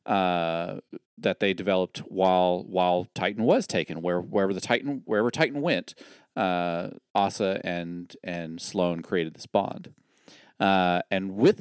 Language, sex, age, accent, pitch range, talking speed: English, male, 40-59, American, 90-130 Hz, 140 wpm